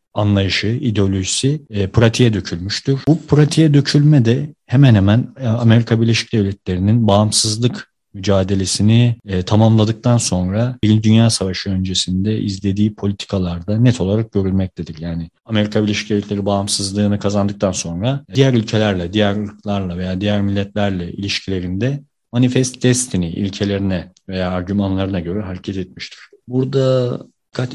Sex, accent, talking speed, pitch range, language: male, native, 115 wpm, 100-120 Hz, Turkish